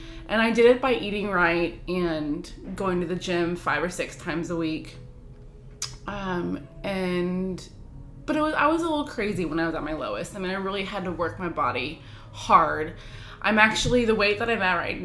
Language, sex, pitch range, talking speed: English, female, 165-215 Hz, 205 wpm